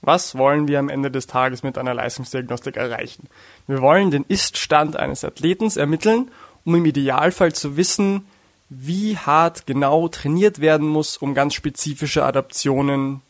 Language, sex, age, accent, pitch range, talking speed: German, male, 20-39, German, 135-165 Hz, 150 wpm